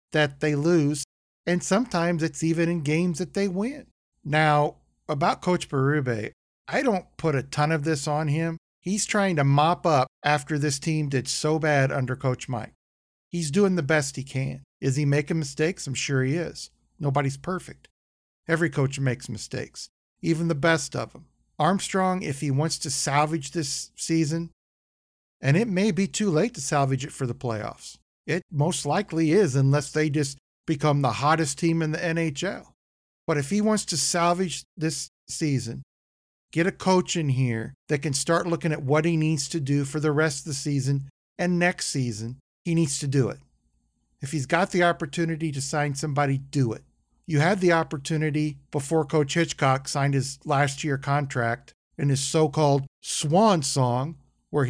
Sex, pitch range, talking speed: male, 135-165 Hz, 180 wpm